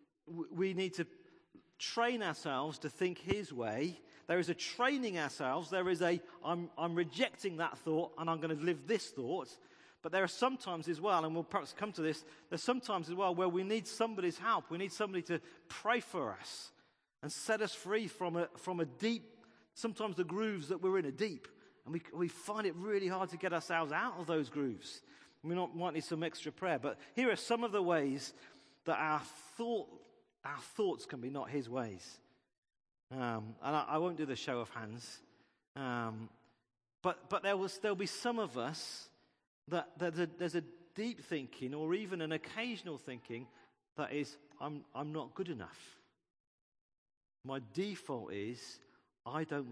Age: 40-59